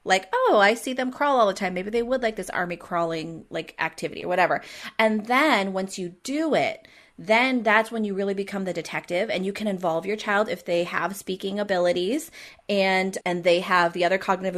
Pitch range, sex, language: 175-225 Hz, female, English